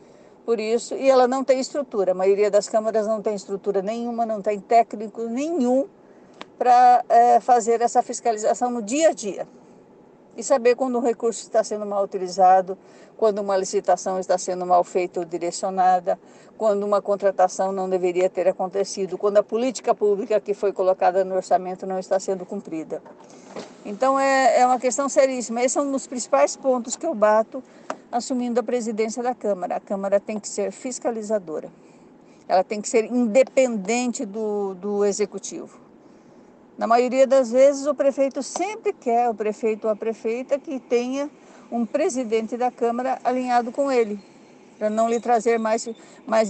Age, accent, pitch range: 50-69, Brazilian, 200-260 Hz